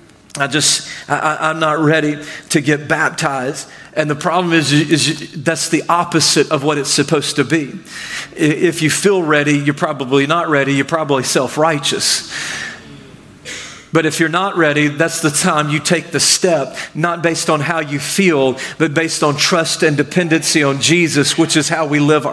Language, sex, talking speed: English, male, 175 wpm